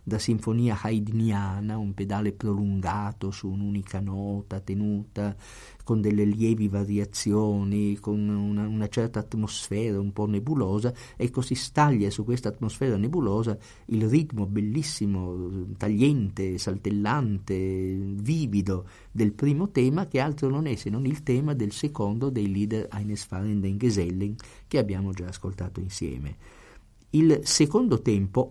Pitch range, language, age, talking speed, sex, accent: 100-130 Hz, Italian, 50-69, 130 wpm, male, native